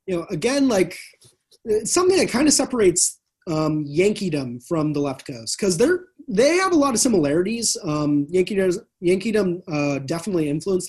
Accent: American